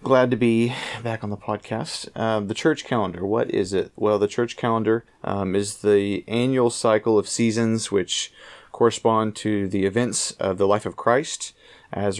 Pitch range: 100-115 Hz